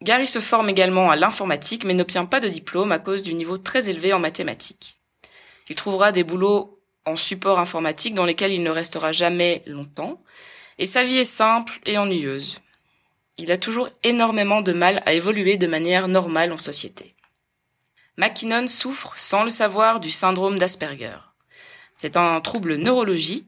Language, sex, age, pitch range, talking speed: French, female, 20-39, 175-215 Hz, 165 wpm